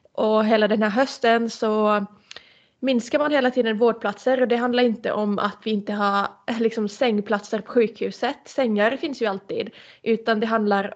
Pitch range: 205-230 Hz